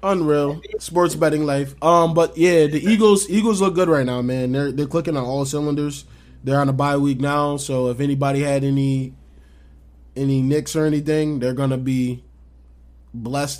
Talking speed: 175 wpm